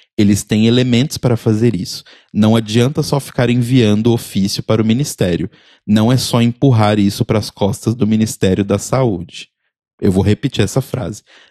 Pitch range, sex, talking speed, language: 105-150 Hz, male, 165 wpm, Portuguese